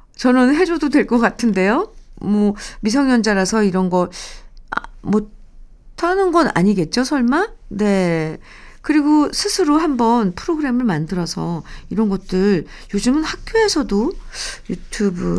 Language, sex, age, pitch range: Korean, female, 50-69, 170-255 Hz